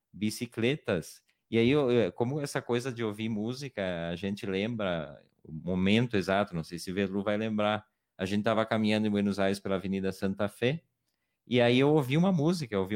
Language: Portuguese